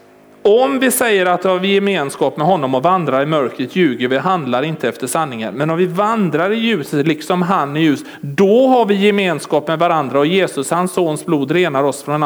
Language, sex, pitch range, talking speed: Swedish, male, 185-235 Hz, 210 wpm